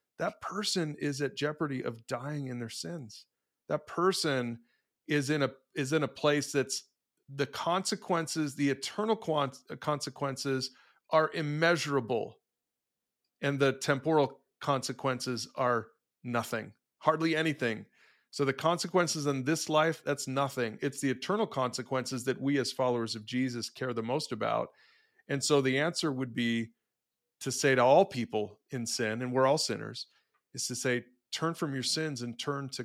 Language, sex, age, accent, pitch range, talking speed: English, male, 40-59, American, 120-150 Hz, 155 wpm